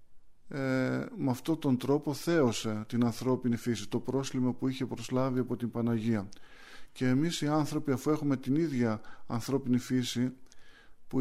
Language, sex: Greek, male